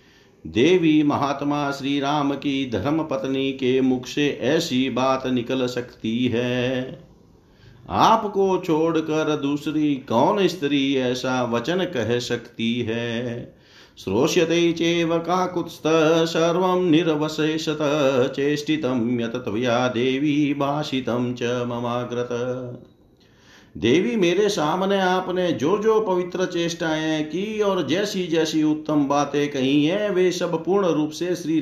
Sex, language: male, Hindi